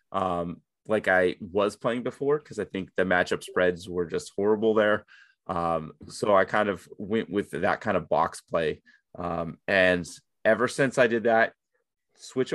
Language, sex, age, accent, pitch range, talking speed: English, male, 30-49, American, 95-115 Hz, 170 wpm